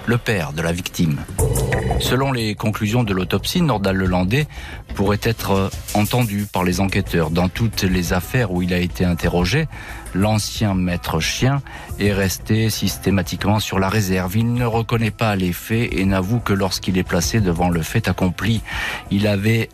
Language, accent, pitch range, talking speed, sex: French, French, 90-110 Hz, 165 wpm, male